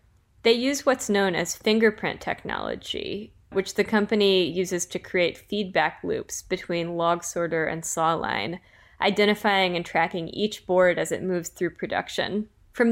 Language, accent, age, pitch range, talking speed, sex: English, American, 10-29, 170-210 Hz, 150 wpm, female